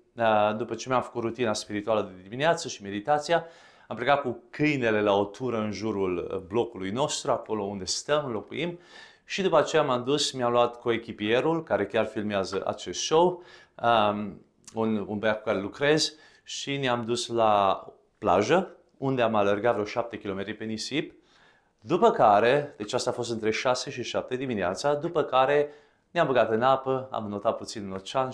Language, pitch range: English, 105-140 Hz